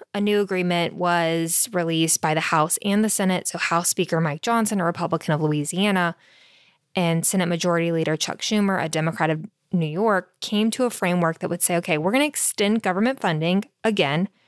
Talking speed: 185 wpm